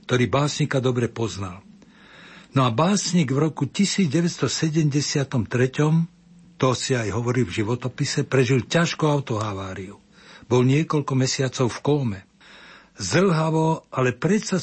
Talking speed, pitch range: 110 wpm, 120-150 Hz